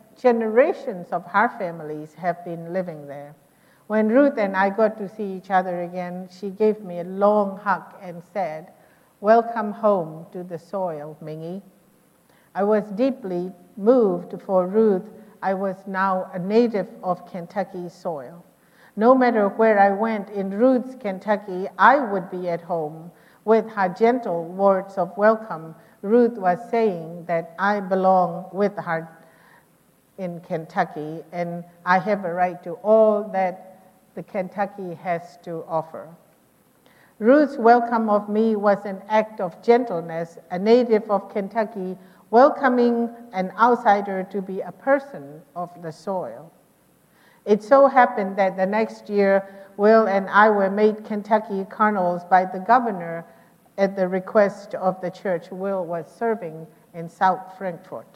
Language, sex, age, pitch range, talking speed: English, female, 50-69, 175-215 Hz, 145 wpm